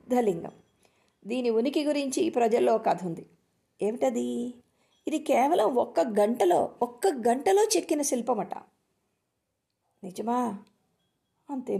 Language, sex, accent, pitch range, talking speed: Telugu, female, native, 215-280 Hz, 90 wpm